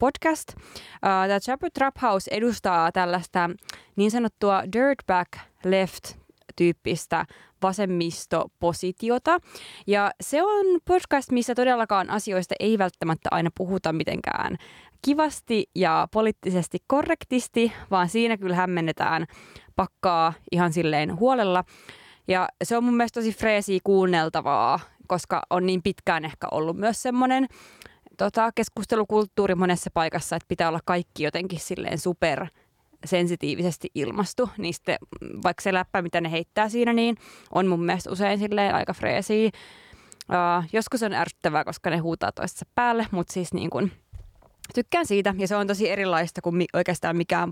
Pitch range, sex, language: 180-235 Hz, female, Finnish